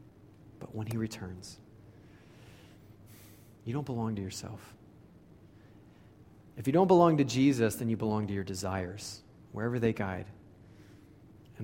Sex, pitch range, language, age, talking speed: male, 105-120 Hz, English, 30-49, 130 wpm